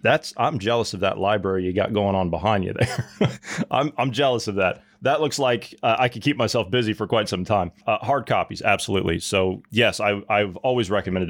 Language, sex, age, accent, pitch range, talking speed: English, male, 30-49, American, 100-125 Hz, 220 wpm